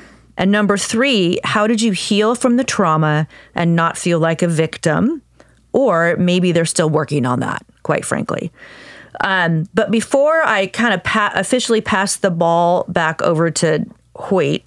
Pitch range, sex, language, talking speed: 165-215 Hz, female, English, 160 wpm